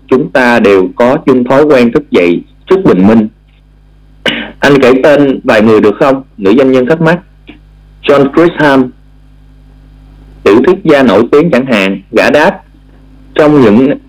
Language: Vietnamese